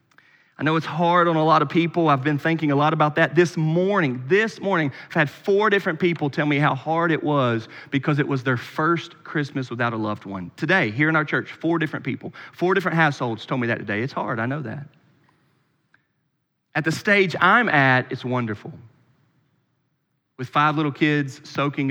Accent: American